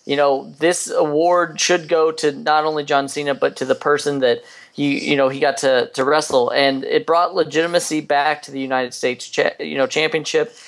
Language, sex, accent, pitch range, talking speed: English, male, American, 130-155 Hz, 200 wpm